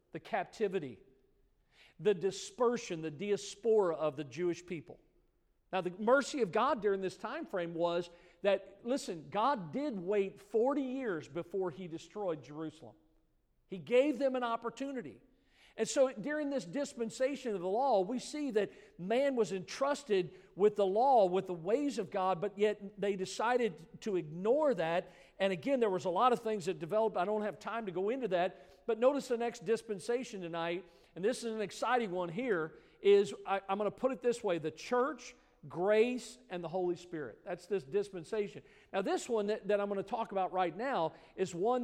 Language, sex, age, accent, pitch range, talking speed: English, male, 50-69, American, 180-230 Hz, 185 wpm